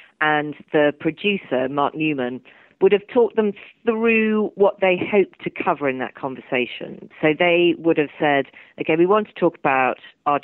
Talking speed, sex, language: 175 wpm, female, English